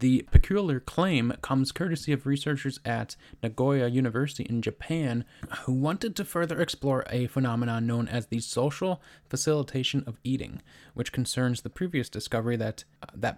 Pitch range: 120-145 Hz